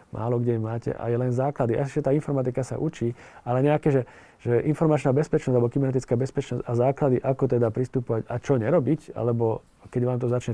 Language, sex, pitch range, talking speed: Slovak, male, 115-140 Hz, 195 wpm